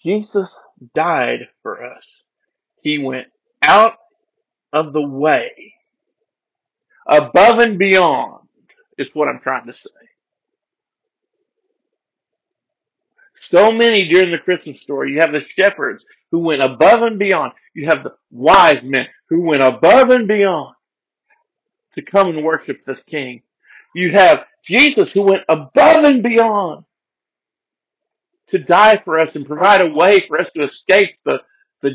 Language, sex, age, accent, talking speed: English, male, 50-69, American, 135 wpm